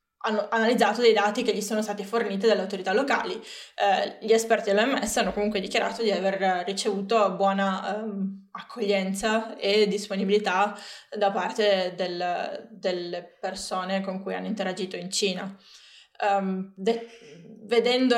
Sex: female